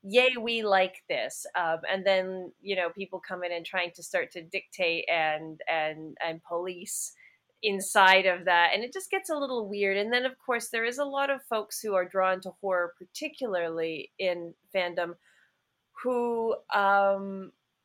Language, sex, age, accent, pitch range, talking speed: English, female, 30-49, American, 175-220 Hz, 175 wpm